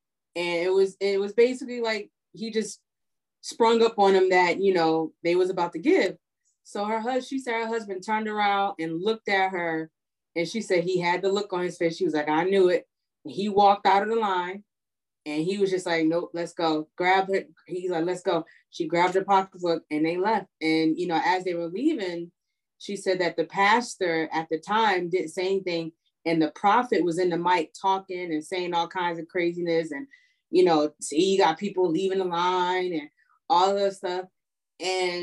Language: English